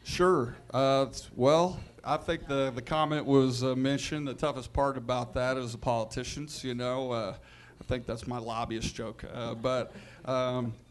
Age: 40-59